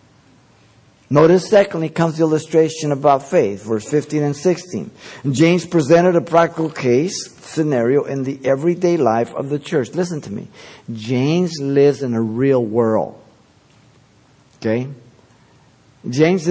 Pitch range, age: 125-160 Hz, 50-69